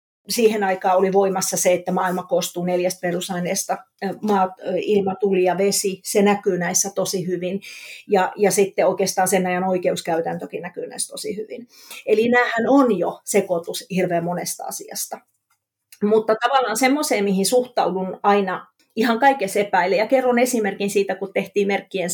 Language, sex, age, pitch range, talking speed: Finnish, female, 30-49, 185-220 Hz, 145 wpm